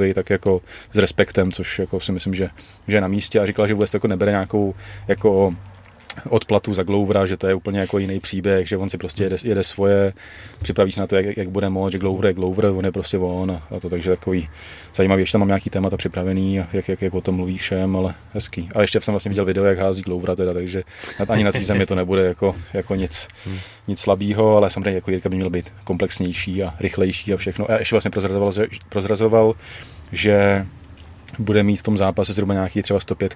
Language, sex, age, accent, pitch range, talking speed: Czech, male, 30-49, native, 95-105 Hz, 215 wpm